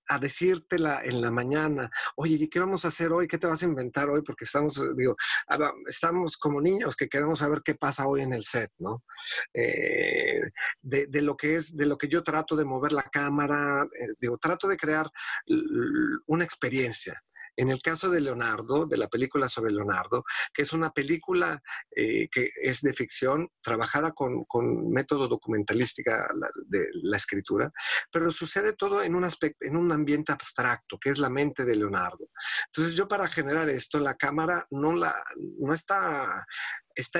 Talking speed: 180 wpm